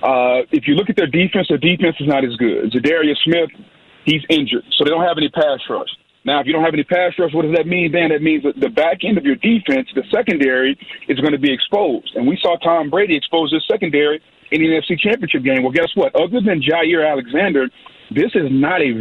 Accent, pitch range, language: American, 145-190 Hz, English